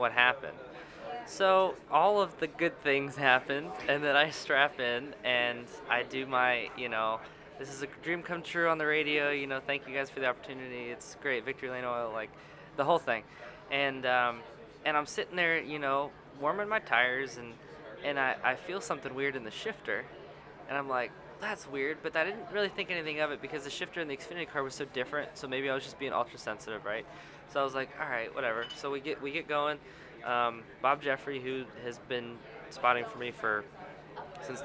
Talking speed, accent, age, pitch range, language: 215 wpm, American, 20-39, 125-155 Hz, English